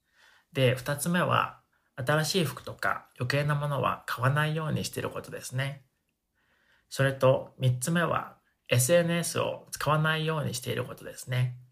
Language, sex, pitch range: Japanese, male, 125-155 Hz